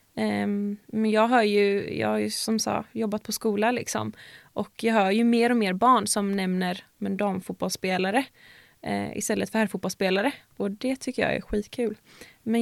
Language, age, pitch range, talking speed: Swedish, 20-39, 205-240 Hz, 145 wpm